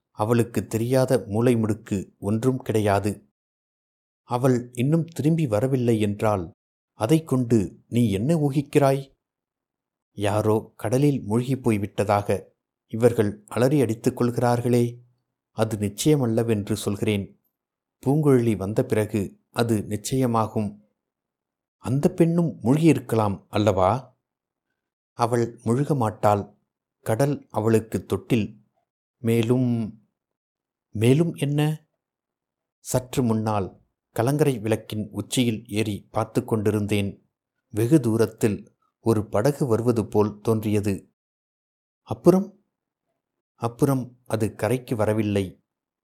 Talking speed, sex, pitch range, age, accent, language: 80 wpm, male, 105-130 Hz, 60-79, native, Tamil